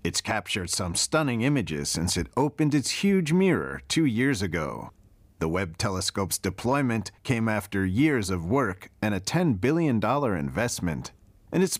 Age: 40-59